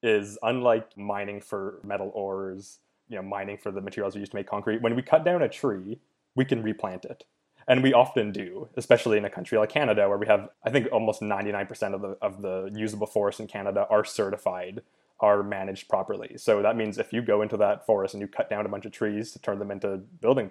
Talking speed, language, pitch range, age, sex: 230 wpm, English, 100-115 Hz, 20-39, male